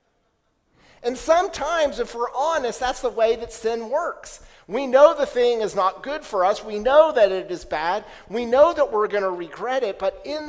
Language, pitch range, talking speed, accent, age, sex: English, 180-255 Hz, 205 wpm, American, 50-69, male